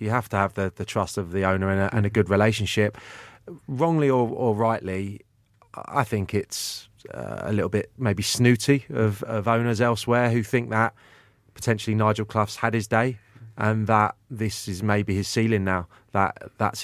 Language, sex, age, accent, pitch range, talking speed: English, male, 30-49, British, 100-120 Hz, 180 wpm